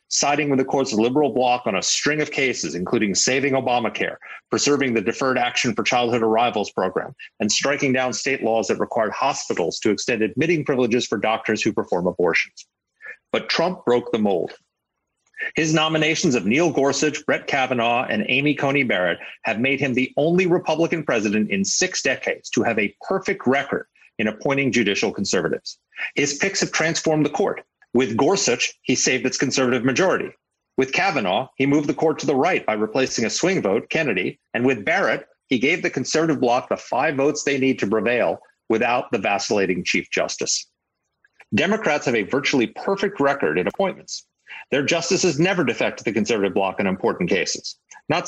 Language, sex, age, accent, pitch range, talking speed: English, male, 30-49, American, 125-160 Hz, 175 wpm